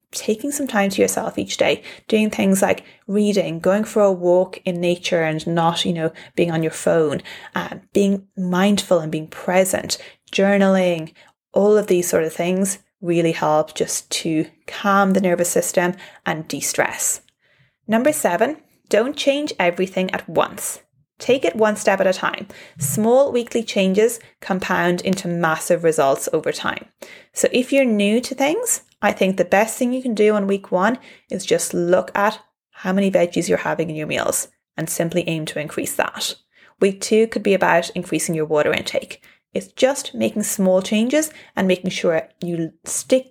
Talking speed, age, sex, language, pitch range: 175 wpm, 30-49, female, English, 170-215 Hz